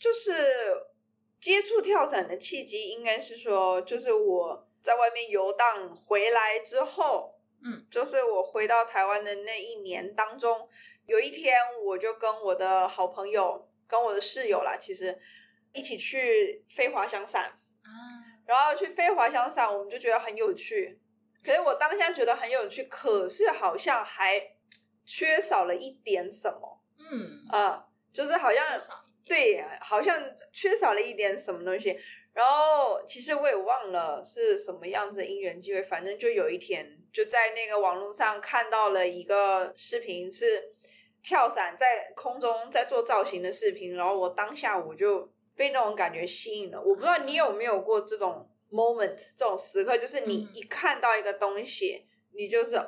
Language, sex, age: Chinese, female, 20-39